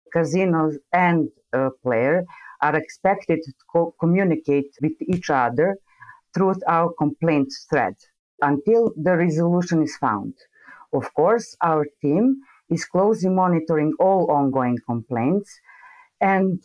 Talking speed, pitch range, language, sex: 110 wpm, 135-170 Hz, English, female